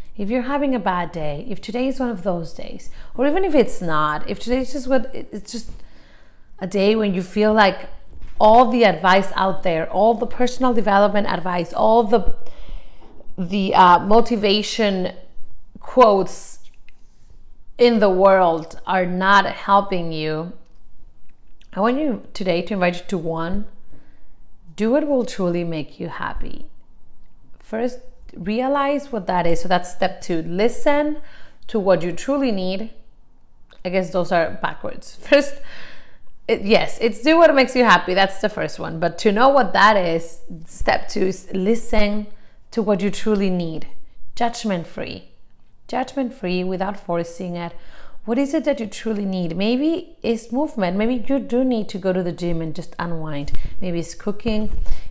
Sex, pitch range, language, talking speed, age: female, 175-235 Hz, English, 160 wpm, 30-49